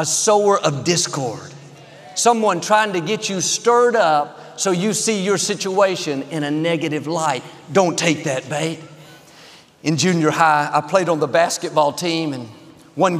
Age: 50-69